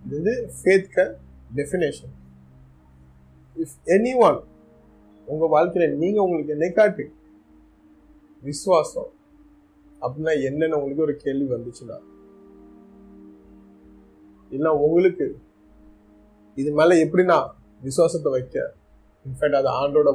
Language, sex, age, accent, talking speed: Tamil, male, 30-49, native, 60 wpm